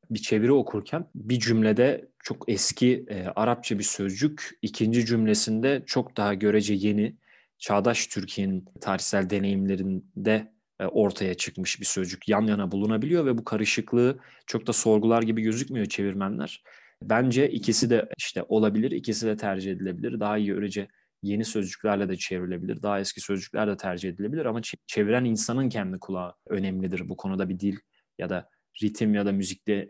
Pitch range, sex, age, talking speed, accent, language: 100-115 Hz, male, 30-49, 155 wpm, native, Turkish